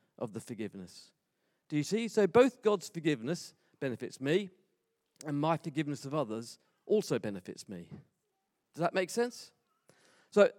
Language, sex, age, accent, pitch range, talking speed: English, male, 40-59, British, 135-190 Hz, 140 wpm